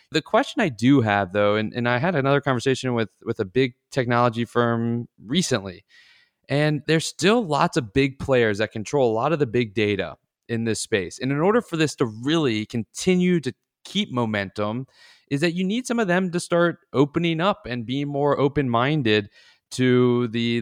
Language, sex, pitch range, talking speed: English, male, 110-145 Hz, 190 wpm